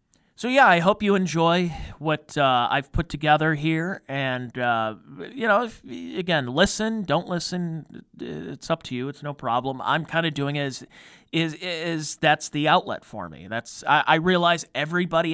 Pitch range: 140-180 Hz